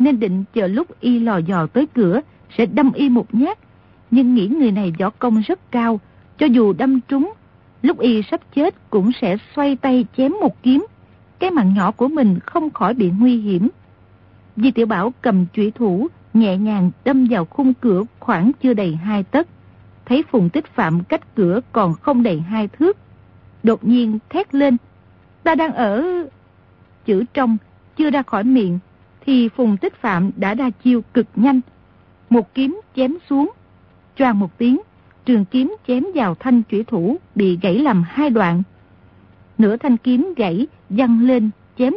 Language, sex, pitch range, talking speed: Vietnamese, female, 205-270 Hz, 175 wpm